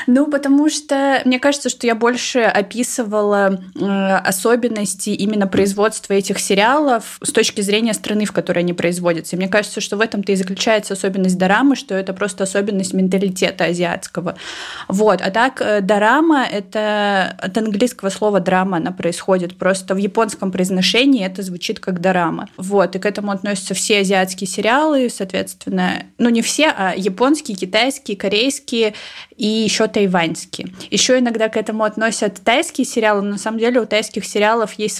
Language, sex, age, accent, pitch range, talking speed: Russian, female, 20-39, native, 185-225 Hz, 160 wpm